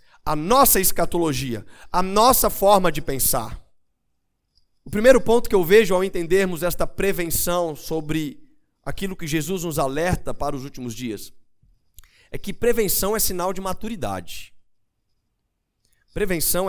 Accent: Brazilian